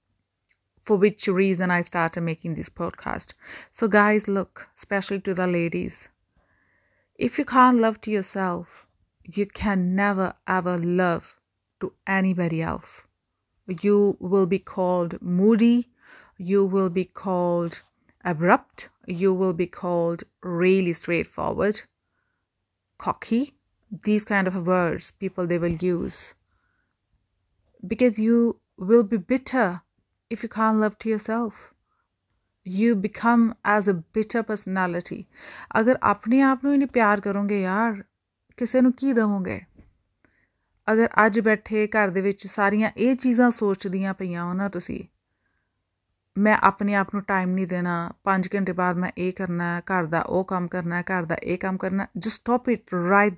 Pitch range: 180-215 Hz